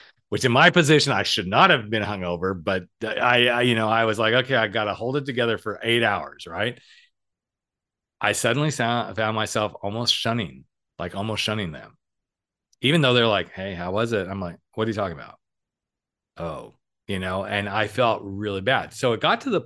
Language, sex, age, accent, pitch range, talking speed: English, male, 40-59, American, 100-125 Hz, 210 wpm